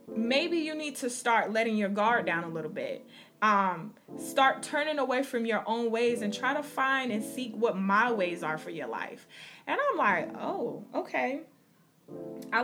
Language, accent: English, American